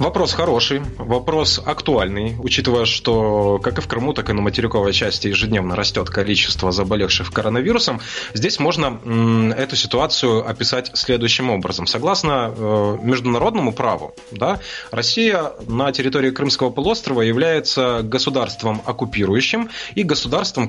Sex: male